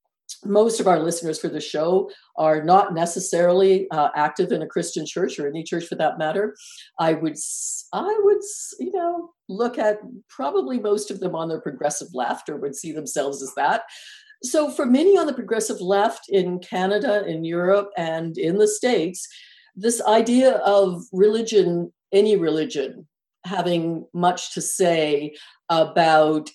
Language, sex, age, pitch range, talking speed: English, female, 50-69, 155-210 Hz, 160 wpm